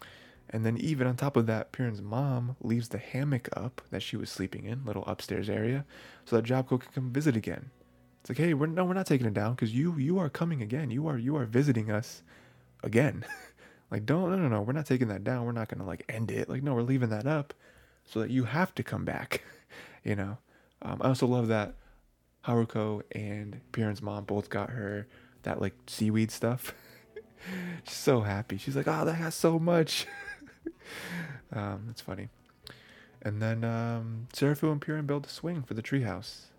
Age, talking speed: 20-39, 200 wpm